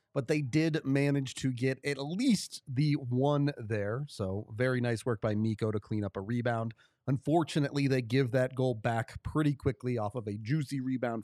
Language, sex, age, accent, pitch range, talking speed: English, male, 30-49, American, 120-150 Hz, 185 wpm